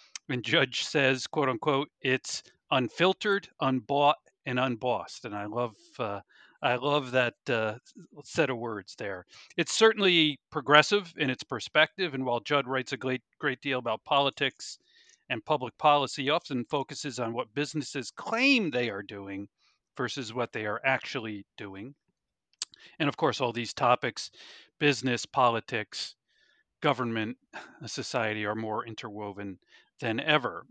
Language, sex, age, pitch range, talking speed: English, male, 40-59, 115-150 Hz, 135 wpm